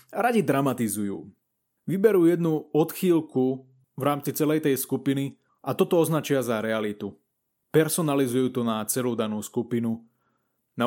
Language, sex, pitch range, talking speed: Slovak, male, 125-145 Hz, 120 wpm